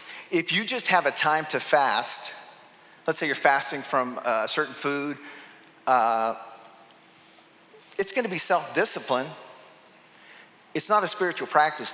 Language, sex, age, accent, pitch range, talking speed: English, male, 50-69, American, 130-170 Hz, 130 wpm